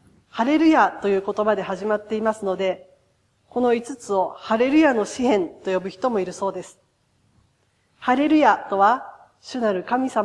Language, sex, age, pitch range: Japanese, female, 40-59, 195-255 Hz